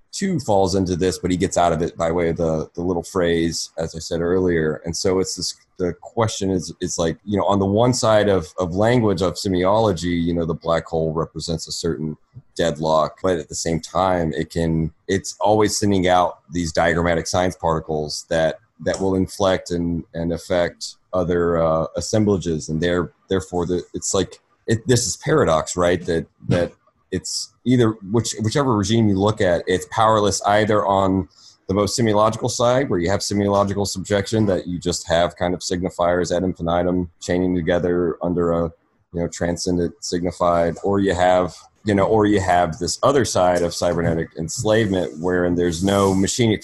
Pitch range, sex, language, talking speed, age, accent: 85-100 Hz, male, English, 185 wpm, 30-49, American